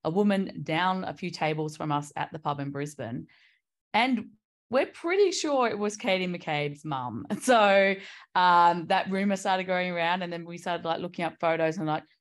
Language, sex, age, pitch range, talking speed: English, female, 20-39, 150-195 Hz, 190 wpm